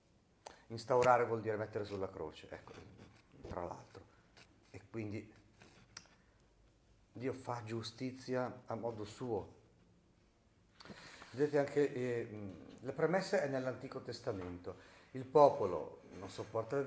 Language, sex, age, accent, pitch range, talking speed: Italian, male, 50-69, native, 110-150 Hz, 105 wpm